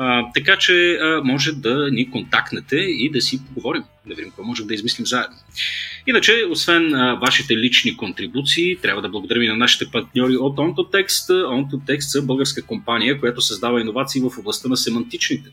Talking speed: 175 wpm